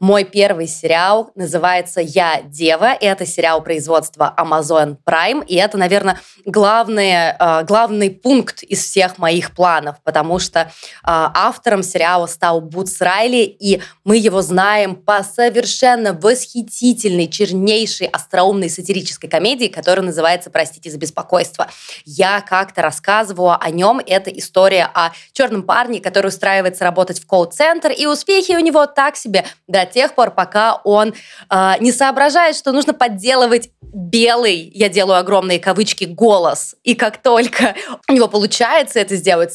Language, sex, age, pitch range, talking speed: Russian, female, 20-39, 175-225 Hz, 140 wpm